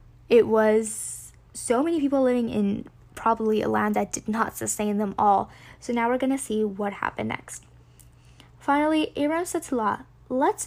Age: 10-29